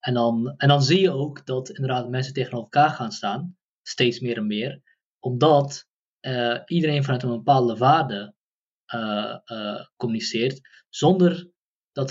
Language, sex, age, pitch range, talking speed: Dutch, male, 20-39, 120-145 Hz, 150 wpm